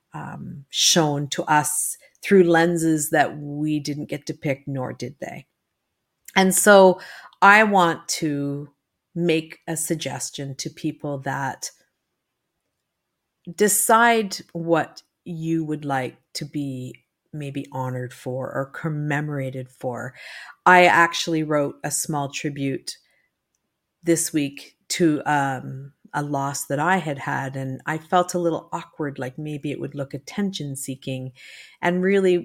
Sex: female